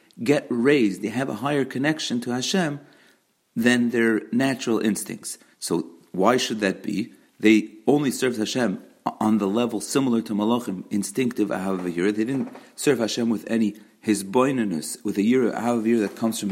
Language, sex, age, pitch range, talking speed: English, male, 40-59, 110-135 Hz, 160 wpm